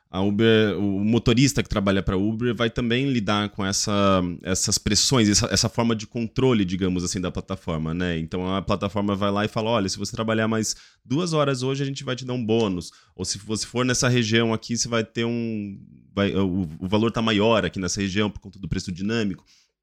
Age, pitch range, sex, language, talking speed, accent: 20-39, 95-130 Hz, male, Portuguese, 220 wpm, Brazilian